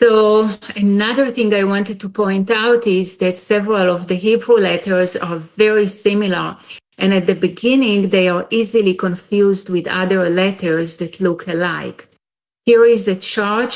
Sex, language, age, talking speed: female, English, 40-59, 155 wpm